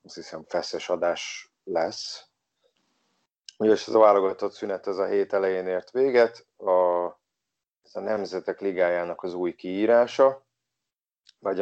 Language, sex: Hungarian, male